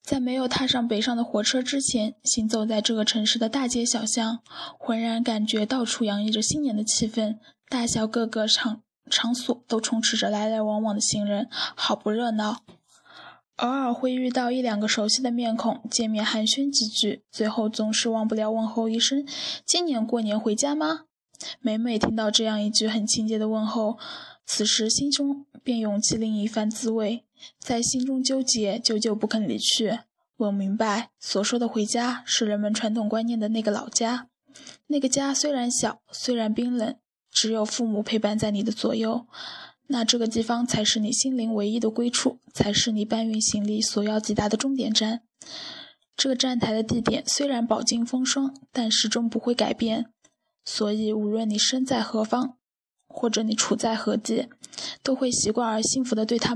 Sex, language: female, Chinese